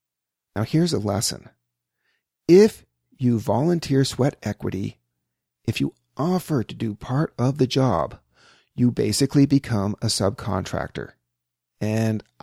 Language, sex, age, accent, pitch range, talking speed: English, male, 40-59, American, 85-125 Hz, 115 wpm